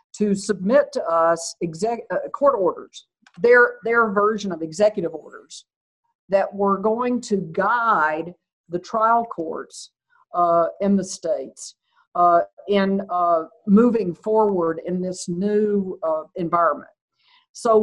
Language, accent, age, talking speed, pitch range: English, American, 50-69, 120 wpm, 170-220 Hz